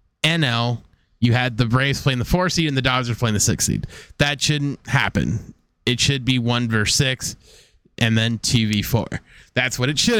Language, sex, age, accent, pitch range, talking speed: English, male, 20-39, American, 105-130 Hz, 205 wpm